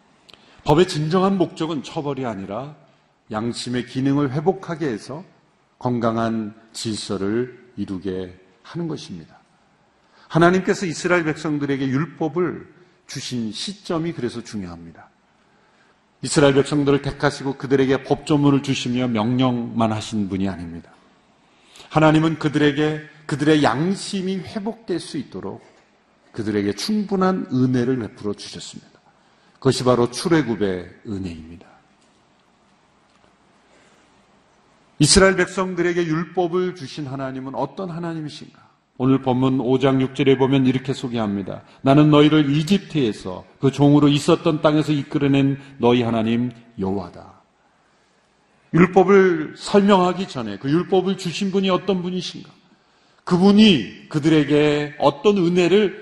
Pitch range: 120-170 Hz